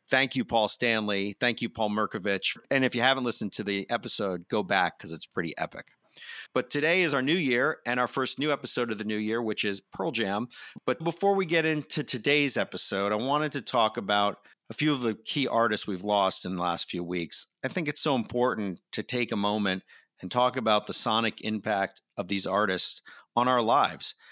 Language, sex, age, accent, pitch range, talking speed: English, male, 40-59, American, 100-135 Hz, 215 wpm